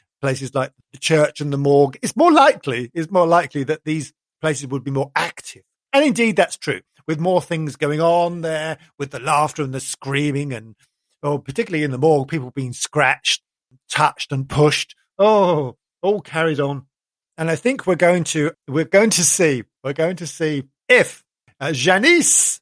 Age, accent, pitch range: 50-69, British, 140-185 Hz